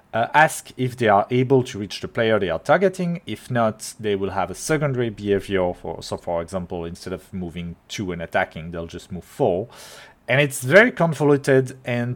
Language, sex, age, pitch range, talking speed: English, male, 30-49, 100-135 Hz, 190 wpm